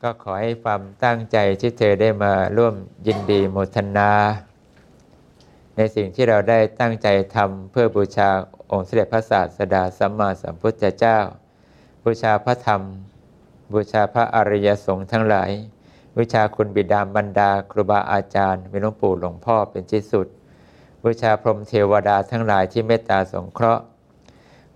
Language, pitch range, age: English, 100-115 Hz, 60-79